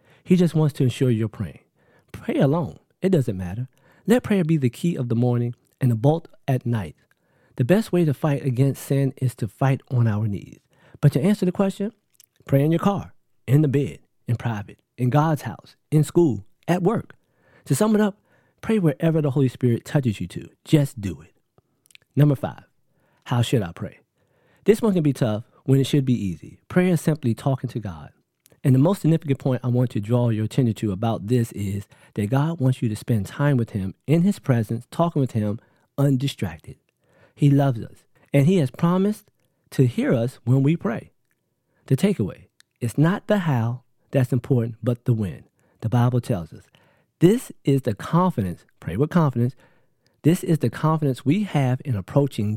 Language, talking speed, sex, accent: English, 195 wpm, male, American